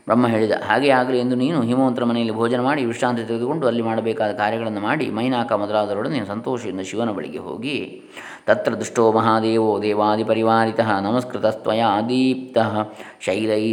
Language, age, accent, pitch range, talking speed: Kannada, 20-39, native, 110-125 Hz, 130 wpm